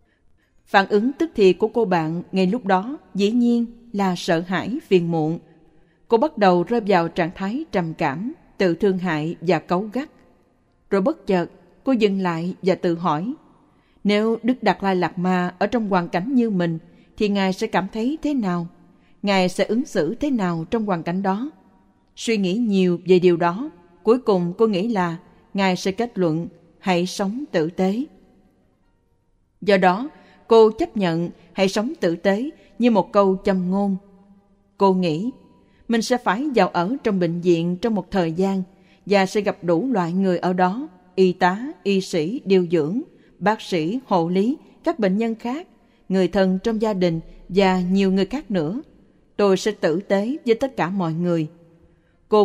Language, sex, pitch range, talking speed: Vietnamese, female, 175-220 Hz, 180 wpm